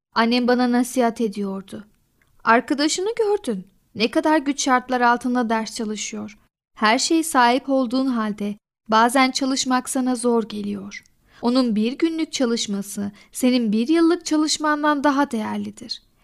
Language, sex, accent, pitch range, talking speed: Turkish, female, native, 220-270 Hz, 120 wpm